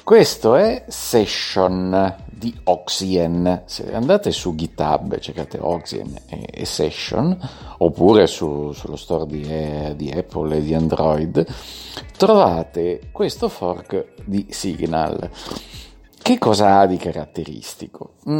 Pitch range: 90-125 Hz